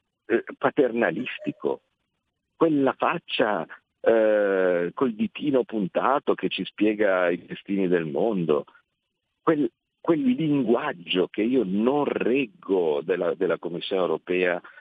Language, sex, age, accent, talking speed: Italian, male, 50-69, native, 105 wpm